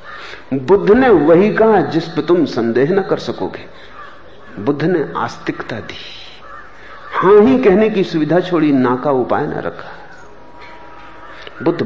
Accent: native